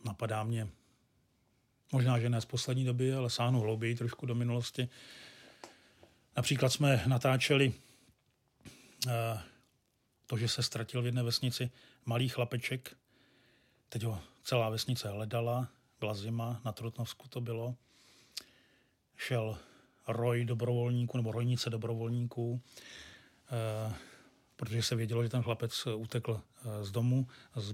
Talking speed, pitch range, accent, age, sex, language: 115 wpm, 115-125 Hz, native, 40-59, male, Czech